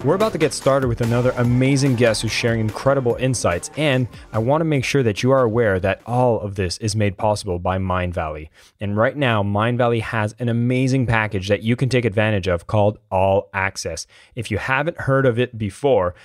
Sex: male